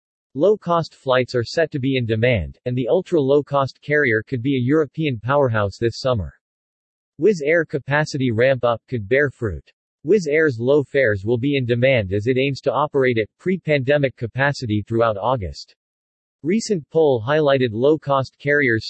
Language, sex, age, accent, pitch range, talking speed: English, male, 40-59, American, 120-150 Hz, 155 wpm